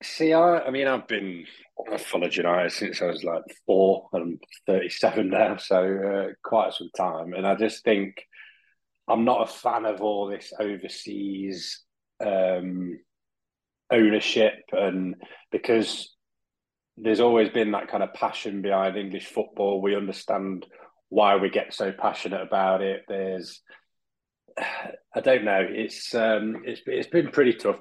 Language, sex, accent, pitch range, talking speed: English, male, British, 95-110 Hz, 140 wpm